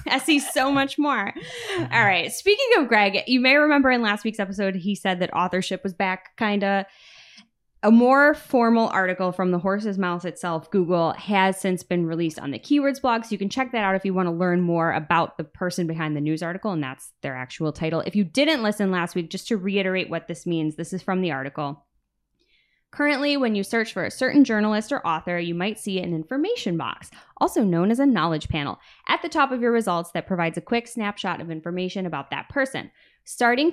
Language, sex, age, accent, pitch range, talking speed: English, female, 10-29, American, 165-220 Hz, 220 wpm